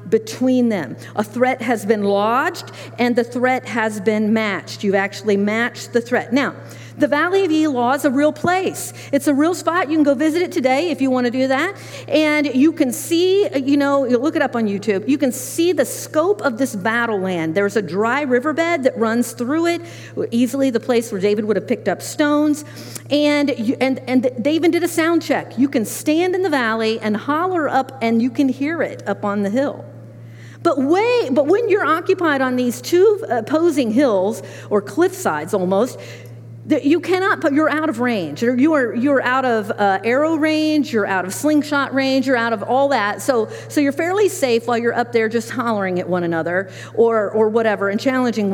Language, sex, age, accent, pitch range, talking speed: English, female, 50-69, American, 220-305 Hz, 200 wpm